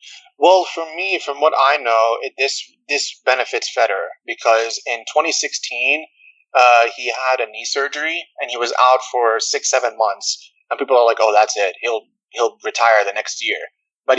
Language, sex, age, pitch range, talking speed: English, male, 30-49, 115-160 Hz, 180 wpm